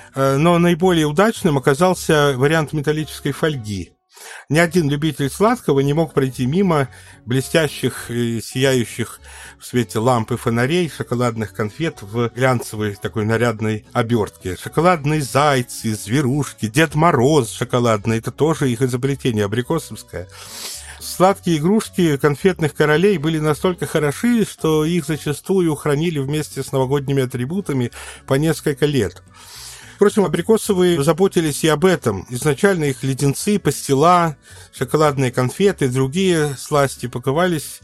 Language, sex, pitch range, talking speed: Russian, male, 125-160 Hz, 115 wpm